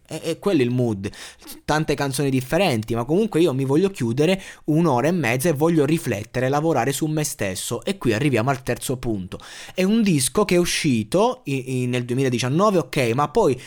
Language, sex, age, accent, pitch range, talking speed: Italian, male, 20-39, native, 120-160 Hz, 185 wpm